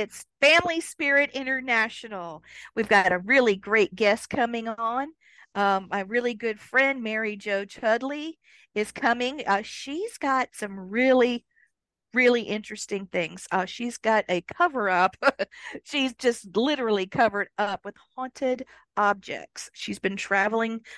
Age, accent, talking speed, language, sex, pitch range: 50-69, American, 130 wpm, English, female, 200-245 Hz